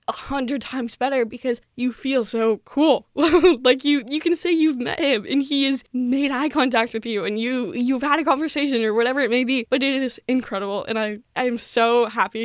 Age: 10-29